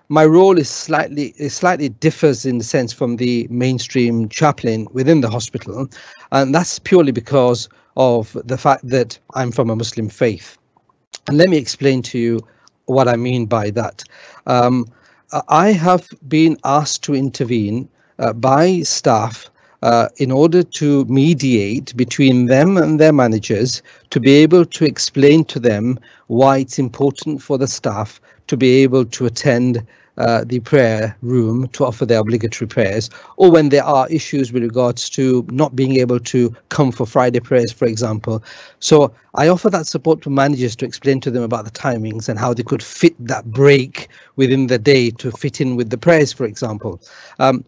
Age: 50-69